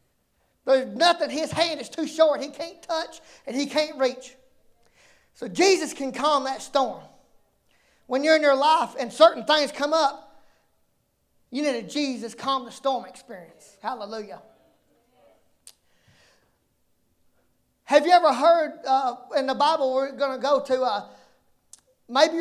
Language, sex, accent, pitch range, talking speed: English, male, American, 265-325 Hz, 145 wpm